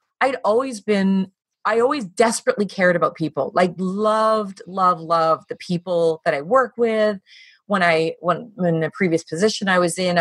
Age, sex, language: 30-49, female, English